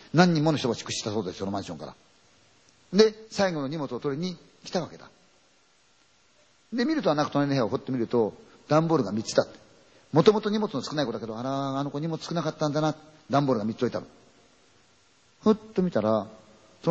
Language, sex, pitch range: Chinese, male, 110-160 Hz